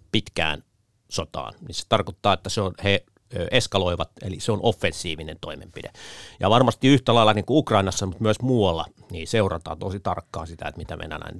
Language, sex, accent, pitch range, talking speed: Finnish, male, native, 85-110 Hz, 175 wpm